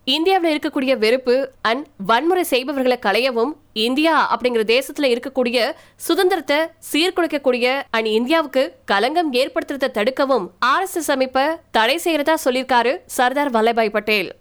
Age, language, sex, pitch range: 20-39, Tamil, female, 235-290 Hz